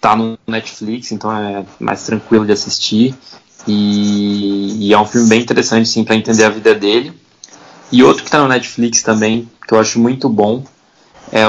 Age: 20-39